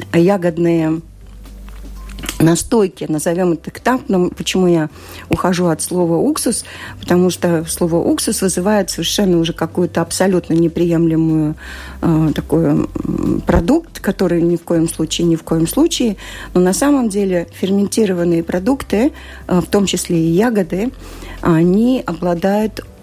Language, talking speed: Russian, 130 wpm